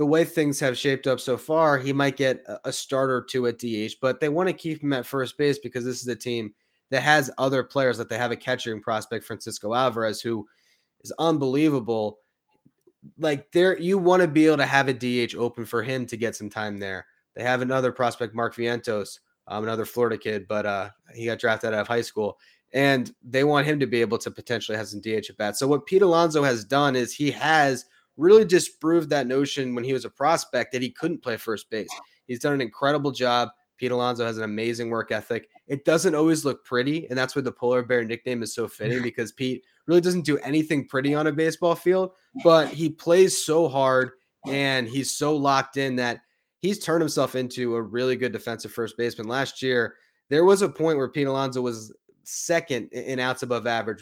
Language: English